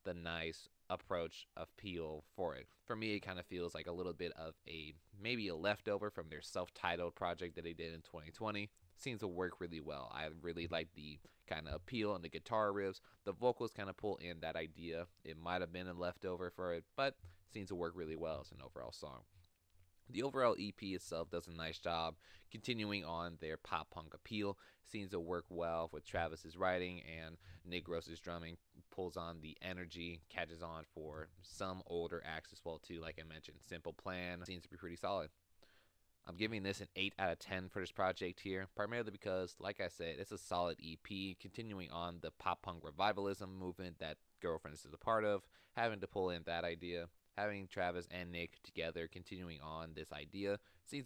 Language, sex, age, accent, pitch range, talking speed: English, male, 20-39, American, 80-95 Hz, 200 wpm